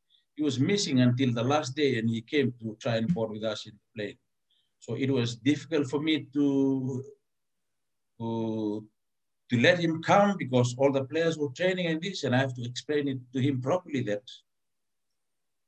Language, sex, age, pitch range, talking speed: English, male, 60-79, 120-145 Hz, 180 wpm